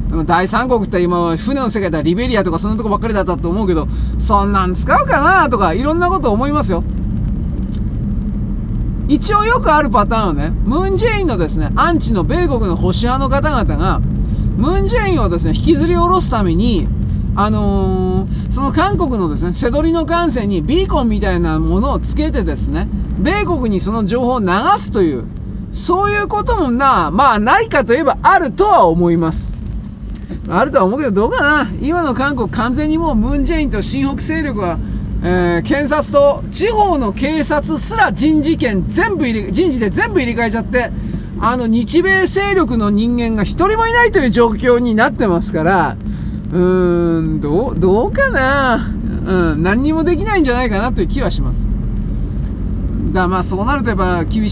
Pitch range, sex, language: 180-295 Hz, male, Japanese